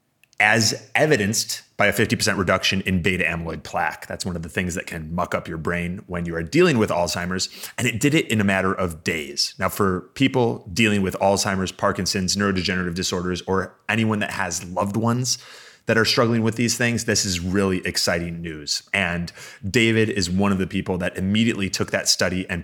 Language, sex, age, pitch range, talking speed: English, male, 30-49, 95-115 Hz, 200 wpm